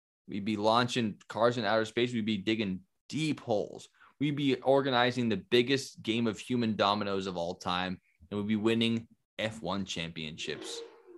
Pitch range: 100-130 Hz